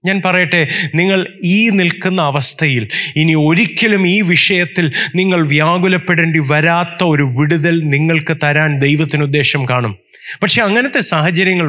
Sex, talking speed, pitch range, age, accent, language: male, 115 wpm, 140-195 Hz, 30-49, native, Malayalam